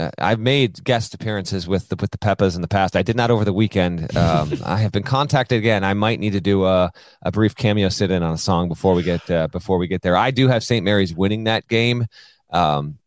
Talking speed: 255 wpm